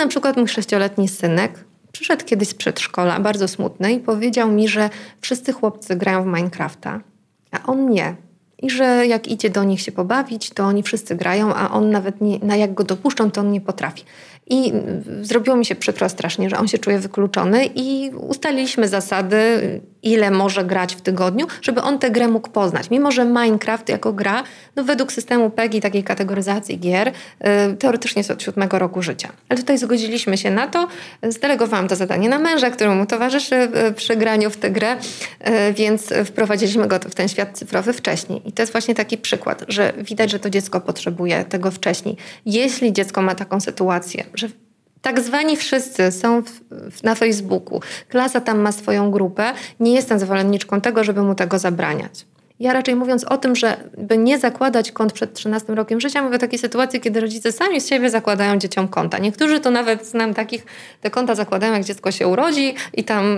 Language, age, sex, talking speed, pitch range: Polish, 30-49, female, 185 wpm, 200-245 Hz